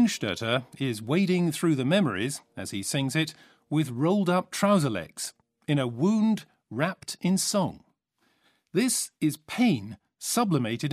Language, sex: English, male